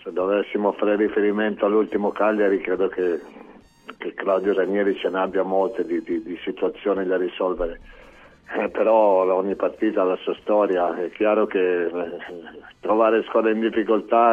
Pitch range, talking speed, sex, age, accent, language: 95-110 Hz, 145 wpm, male, 50-69, native, Italian